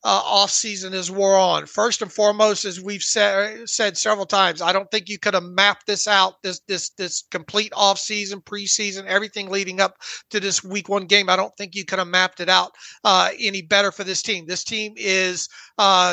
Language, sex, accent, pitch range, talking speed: English, male, American, 190-220 Hz, 210 wpm